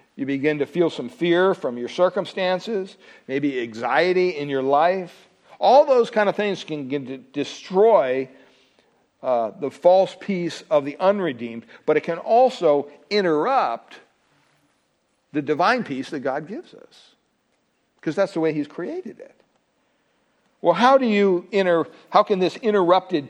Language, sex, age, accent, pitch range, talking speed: English, male, 60-79, American, 140-190 Hz, 145 wpm